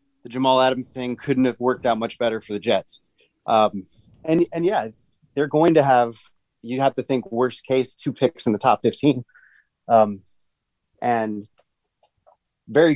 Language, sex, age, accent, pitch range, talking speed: English, male, 30-49, American, 120-145 Hz, 170 wpm